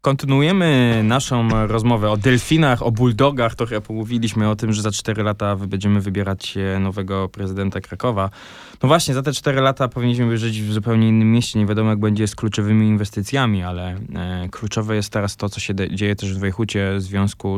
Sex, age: male, 20-39